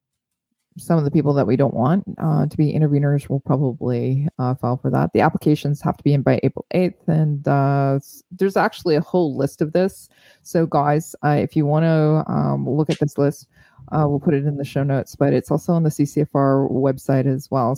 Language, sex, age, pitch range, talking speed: English, female, 20-39, 135-160 Hz, 215 wpm